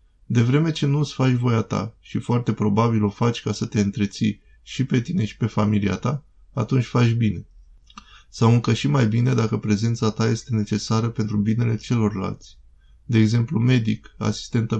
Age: 20-39